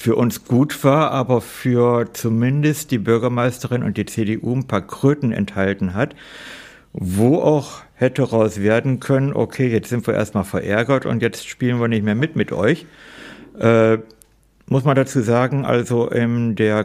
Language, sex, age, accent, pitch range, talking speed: German, male, 60-79, German, 105-125 Hz, 165 wpm